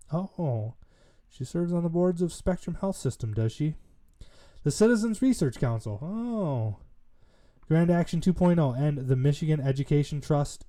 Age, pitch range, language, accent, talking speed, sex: 20-39, 95-150 Hz, English, American, 140 wpm, male